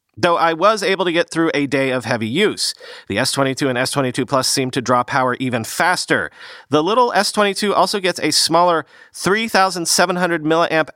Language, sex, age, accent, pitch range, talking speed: English, male, 40-59, American, 130-170 Hz, 170 wpm